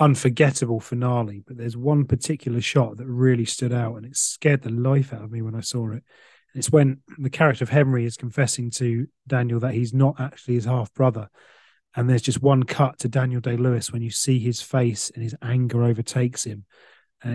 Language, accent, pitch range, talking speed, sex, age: English, British, 120-135 Hz, 200 wpm, male, 30-49